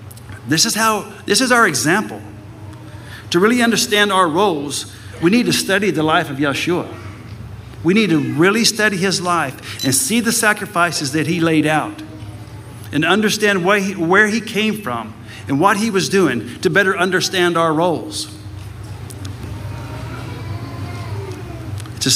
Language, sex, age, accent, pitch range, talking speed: English, male, 60-79, American, 110-170 Hz, 145 wpm